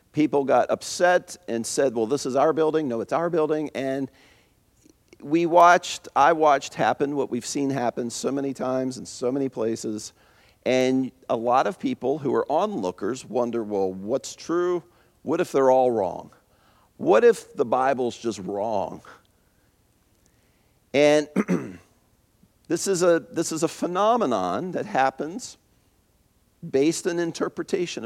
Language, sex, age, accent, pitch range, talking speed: English, male, 50-69, American, 115-155 Hz, 140 wpm